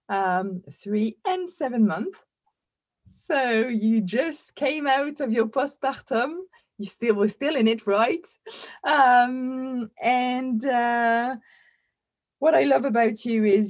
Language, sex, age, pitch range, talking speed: English, female, 20-39, 190-245 Hz, 125 wpm